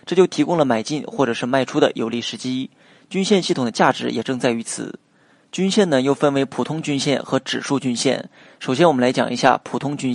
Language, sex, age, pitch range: Chinese, male, 20-39, 130-155 Hz